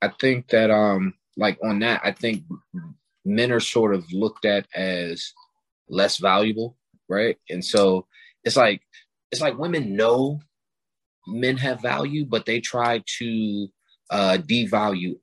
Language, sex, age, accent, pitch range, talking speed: English, male, 20-39, American, 90-115 Hz, 140 wpm